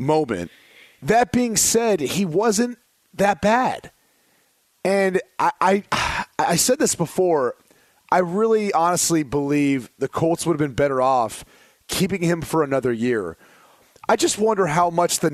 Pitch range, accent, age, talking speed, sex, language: 145-195 Hz, American, 30-49, 145 wpm, male, English